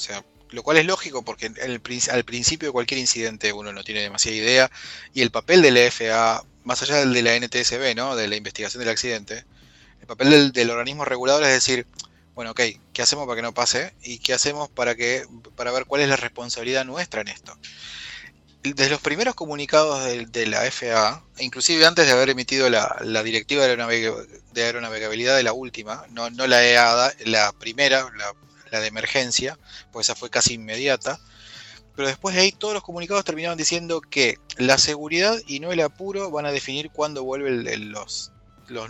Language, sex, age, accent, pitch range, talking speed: Spanish, male, 20-39, Argentinian, 115-145 Hz, 195 wpm